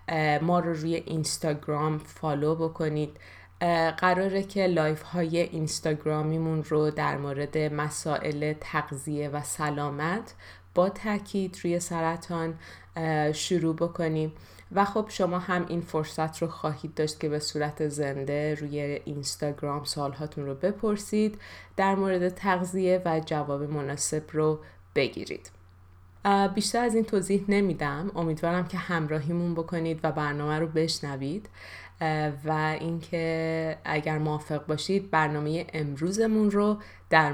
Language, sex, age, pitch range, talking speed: Persian, female, 20-39, 150-175 Hz, 115 wpm